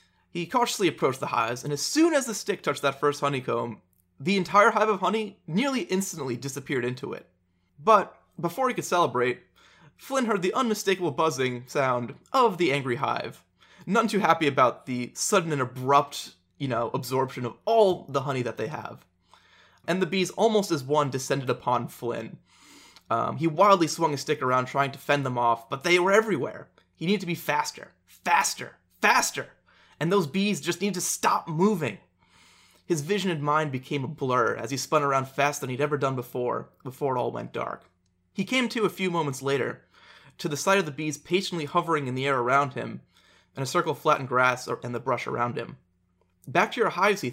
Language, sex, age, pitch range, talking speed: English, male, 20-39, 125-185 Hz, 200 wpm